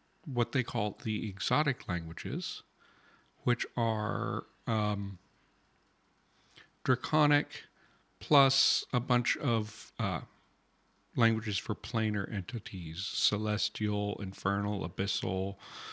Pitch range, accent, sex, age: 100-125 Hz, American, male, 40-59